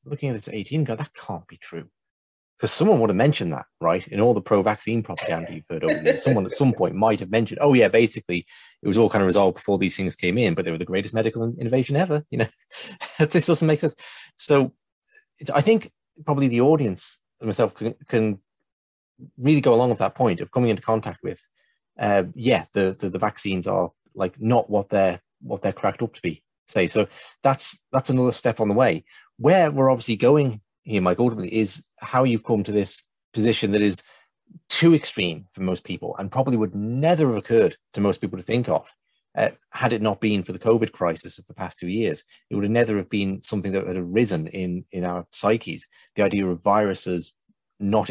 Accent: British